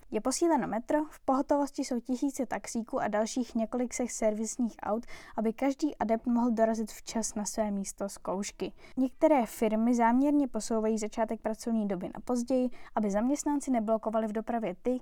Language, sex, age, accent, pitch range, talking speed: Czech, female, 10-29, native, 210-250 Hz, 155 wpm